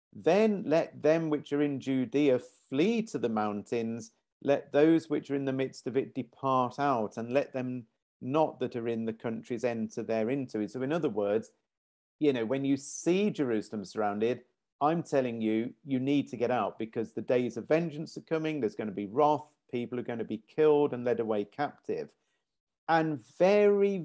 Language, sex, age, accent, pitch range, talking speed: English, male, 50-69, British, 120-160 Hz, 195 wpm